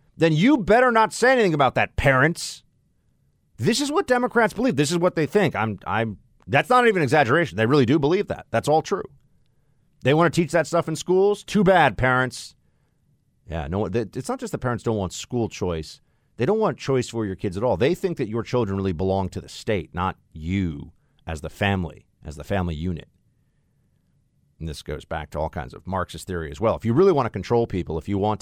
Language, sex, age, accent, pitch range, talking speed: English, male, 40-59, American, 95-145 Hz, 225 wpm